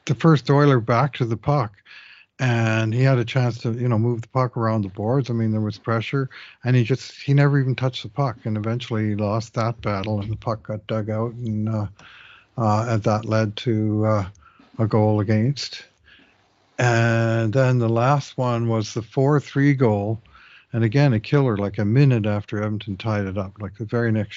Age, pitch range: 60-79, 110-135 Hz